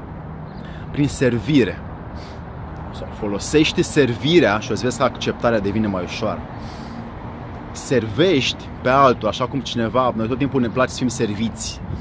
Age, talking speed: 30-49, 135 wpm